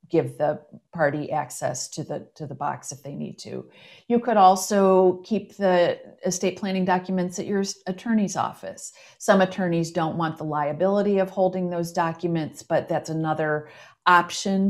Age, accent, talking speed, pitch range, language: 50-69, American, 160 wpm, 160-190 Hz, English